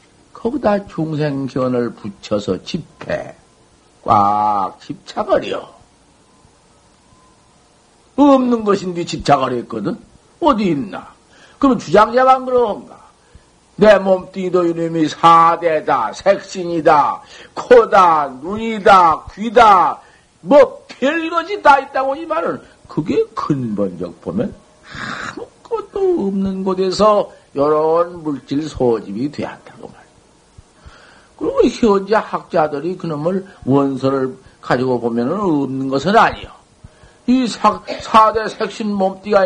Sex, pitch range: male, 165-230 Hz